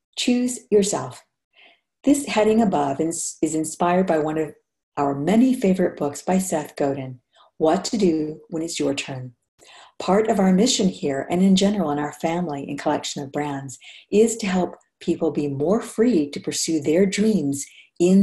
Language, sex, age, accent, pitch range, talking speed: English, female, 50-69, American, 145-205 Hz, 170 wpm